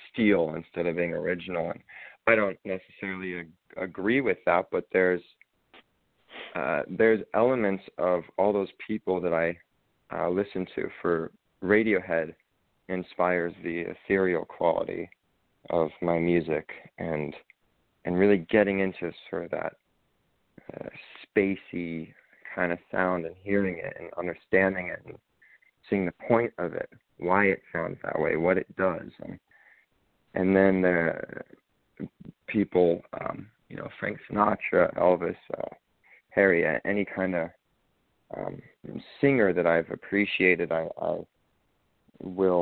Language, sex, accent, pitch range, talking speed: English, male, American, 85-95 Hz, 130 wpm